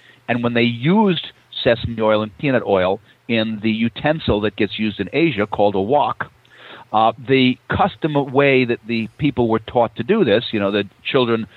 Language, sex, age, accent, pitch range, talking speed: English, male, 50-69, American, 105-135 Hz, 185 wpm